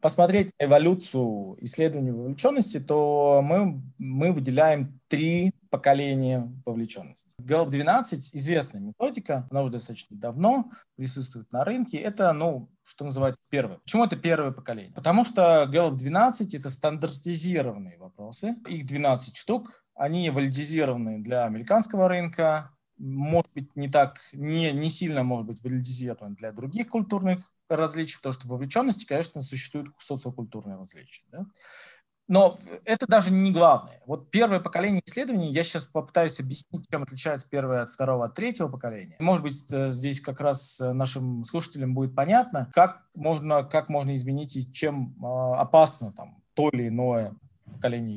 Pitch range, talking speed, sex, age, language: 130-175 Hz, 140 wpm, male, 20-39, Russian